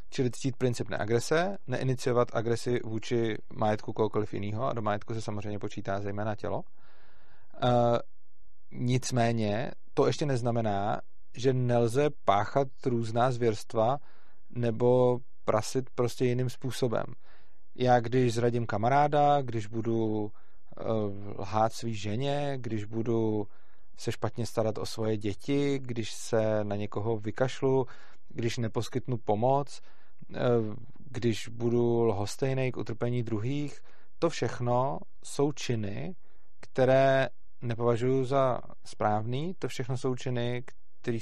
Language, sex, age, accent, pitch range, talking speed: Czech, male, 30-49, native, 110-135 Hz, 115 wpm